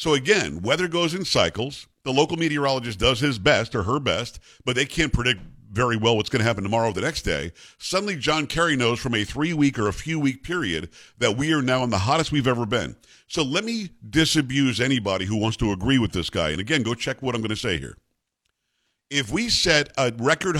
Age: 50-69